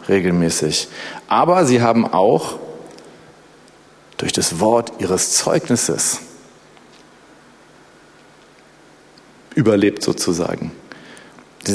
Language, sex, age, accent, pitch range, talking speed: German, male, 40-59, German, 115-130 Hz, 65 wpm